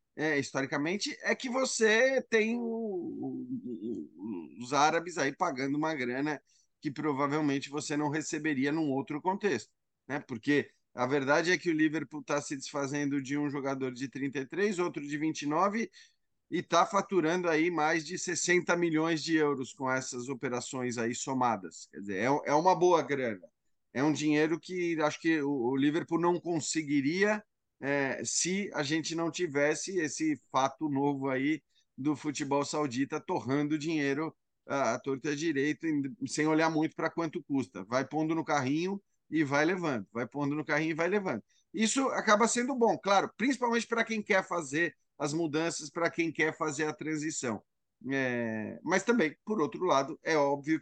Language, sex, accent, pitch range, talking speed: Portuguese, male, Brazilian, 140-175 Hz, 165 wpm